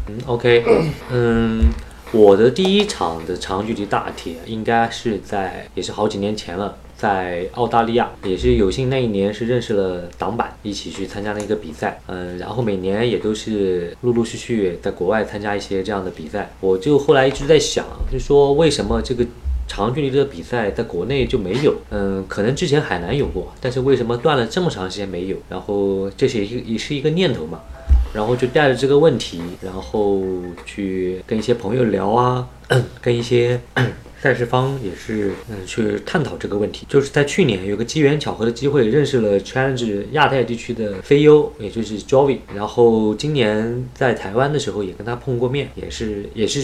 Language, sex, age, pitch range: Chinese, male, 20-39, 100-130 Hz